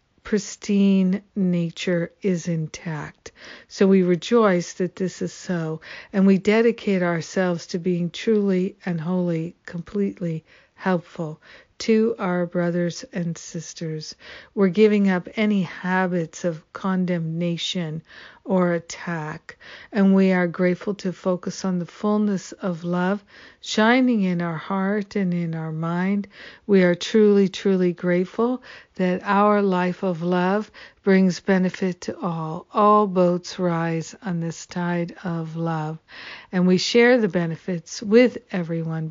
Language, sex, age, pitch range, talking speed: English, female, 60-79, 170-195 Hz, 130 wpm